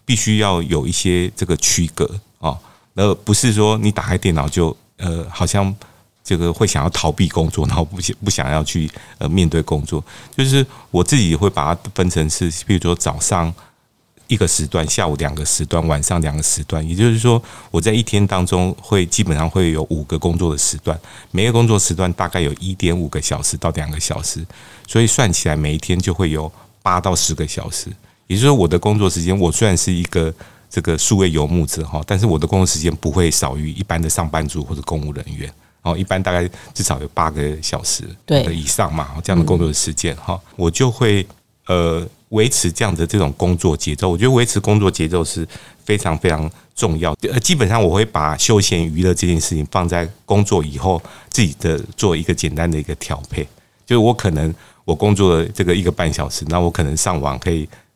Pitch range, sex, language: 80-105 Hz, male, Chinese